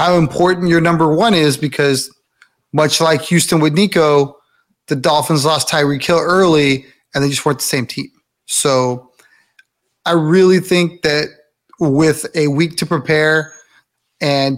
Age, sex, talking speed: 30-49, male, 150 wpm